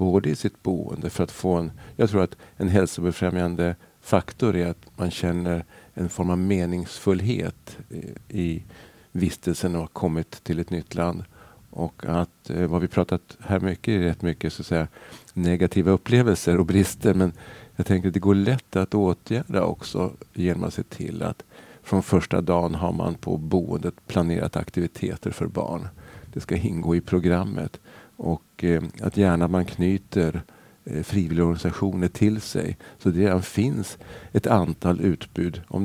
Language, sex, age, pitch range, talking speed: Swedish, male, 50-69, 85-105 Hz, 160 wpm